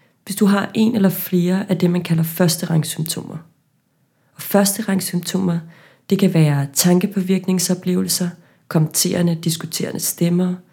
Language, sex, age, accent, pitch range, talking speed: Danish, female, 30-49, native, 165-185 Hz, 125 wpm